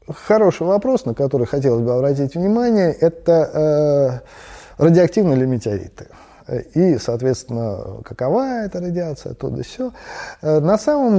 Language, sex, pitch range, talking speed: Russian, male, 110-160 Hz, 125 wpm